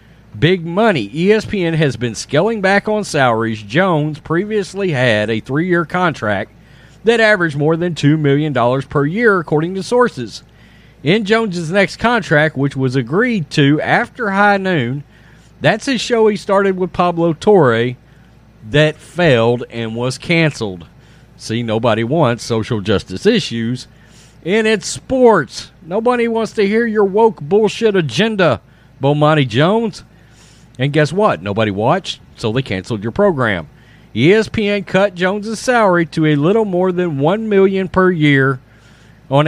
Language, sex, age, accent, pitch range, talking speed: English, male, 40-59, American, 130-200 Hz, 140 wpm